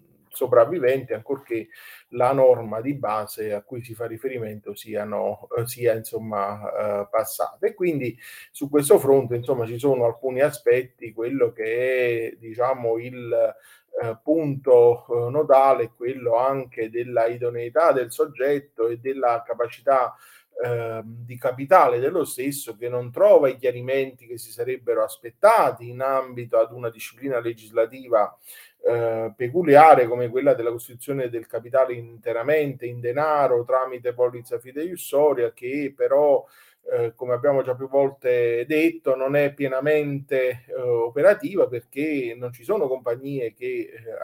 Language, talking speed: Italian, 130 wpm